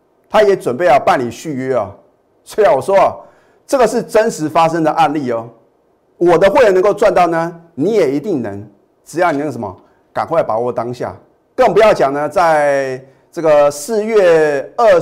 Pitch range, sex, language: 130-175 Hz, male, Chinese